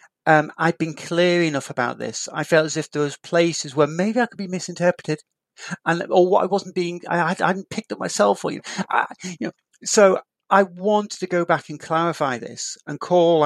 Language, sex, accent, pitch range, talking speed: English, male, British, 160-210 Hz, 220 wpm